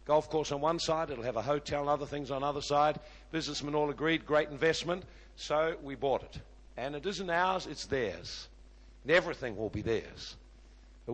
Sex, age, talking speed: male, 60-79, 200 wpm